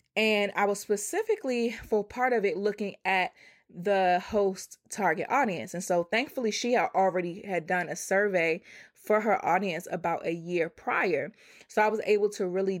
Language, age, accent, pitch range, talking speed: English, 20-39, American, 180-215 Hz, 170 wpm